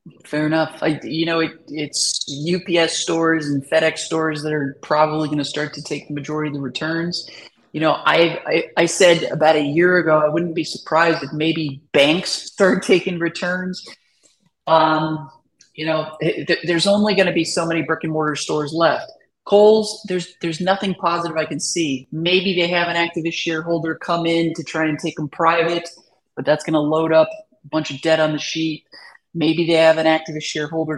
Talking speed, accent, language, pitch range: 200 wpm, American, English, 150-170 Hz